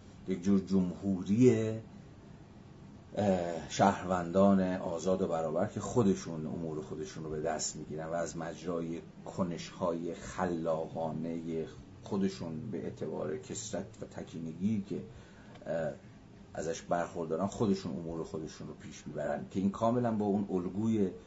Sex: male